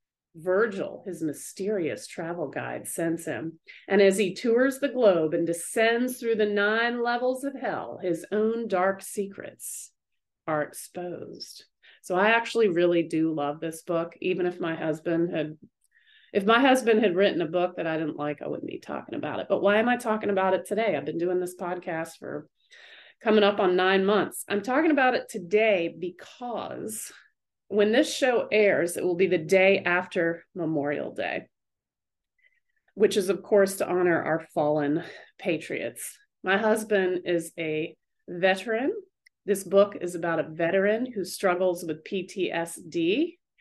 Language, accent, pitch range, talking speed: English, American, 170-220 Hz, 160 wpm